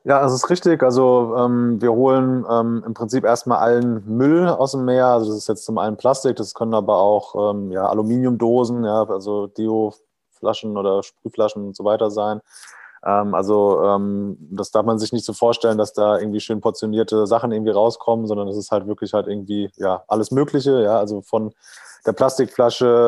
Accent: German